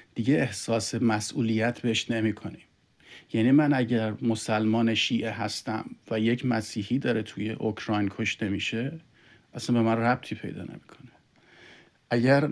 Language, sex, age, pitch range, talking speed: Persian, male, 40-59, 110-130 Hz, 130 wpm